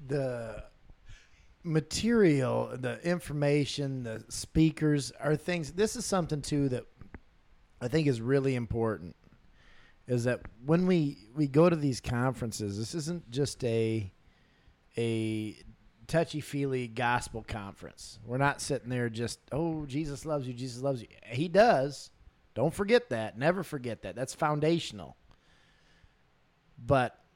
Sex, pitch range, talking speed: male, 115-150 Hz, 125 wpm